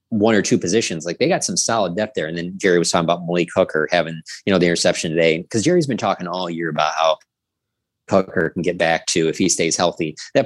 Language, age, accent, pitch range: English, 20-39, American, 85-100 Hz